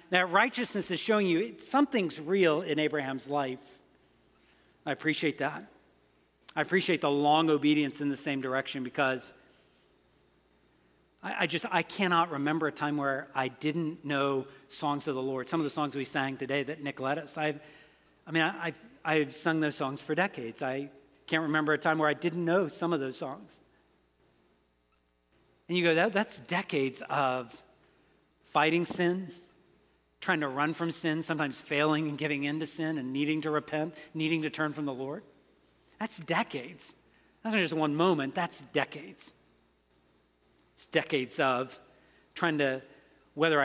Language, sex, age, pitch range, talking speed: English, male, 40-59, 135-165 Hz, 160 wpm